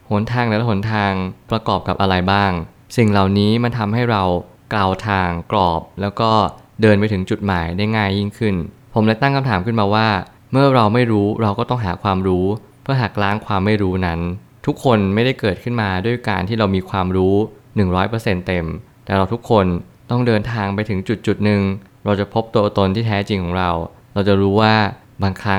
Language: Thai